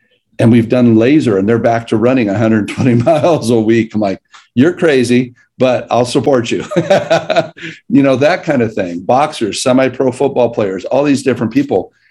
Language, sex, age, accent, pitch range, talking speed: English, male, 50-69, American, 110-135 Hz, 175 wpm